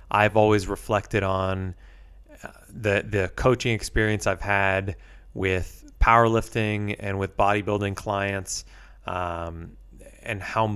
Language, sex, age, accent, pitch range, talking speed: English, male, 20-39, American, 90-110 Hz, 105 wpm